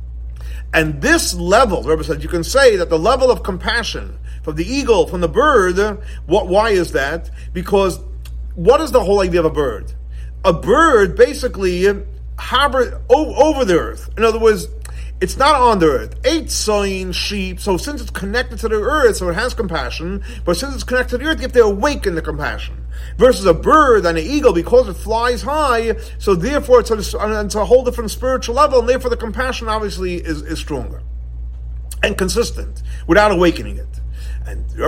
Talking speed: 185 wpm